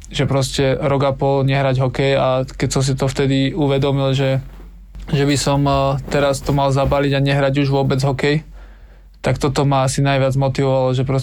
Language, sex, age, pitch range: Slovak, male, 20-39, 135-140 Hz